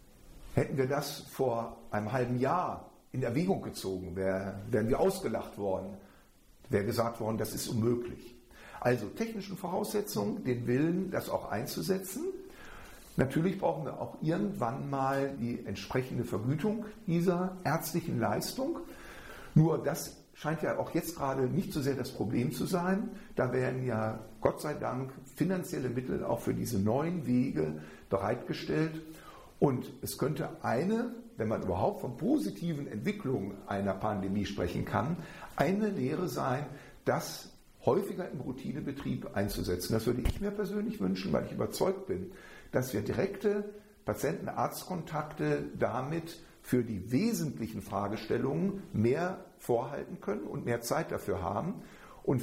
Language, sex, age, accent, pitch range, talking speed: German, male, 50-69, German, 115-185 Hz, 135 wpm